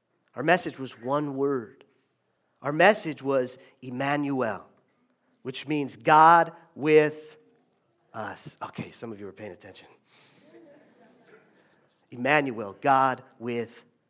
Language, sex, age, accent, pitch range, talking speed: English, male, 40-59, American, 155-245 Hz, 100 wpm